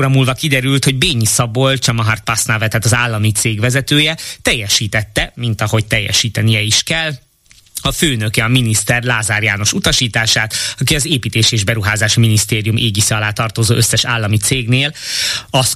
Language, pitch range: Hungarian, 110-130 Hz